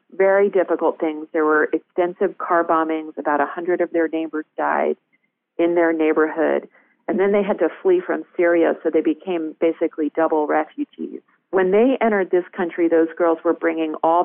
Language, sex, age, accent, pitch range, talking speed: English, female, 40-59, American, 160-200 Hz, 175 wpm